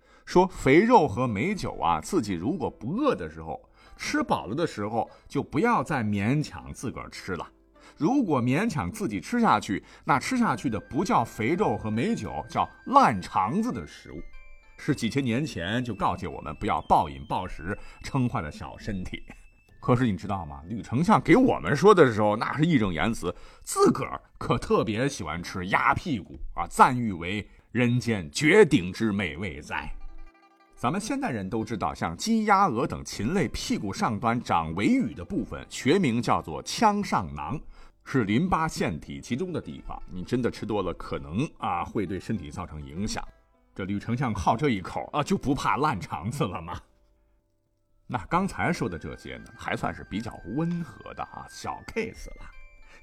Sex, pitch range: male, 95-160 Hz